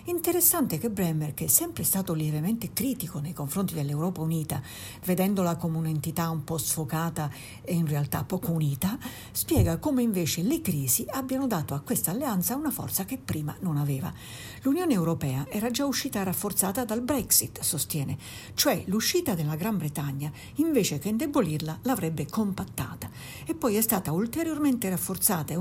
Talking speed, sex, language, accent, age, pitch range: 155 wpm, female, Italian, native, 50-69, 155-230 Hz